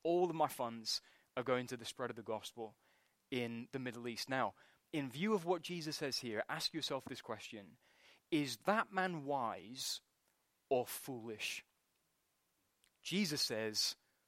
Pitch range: 125-190 Hz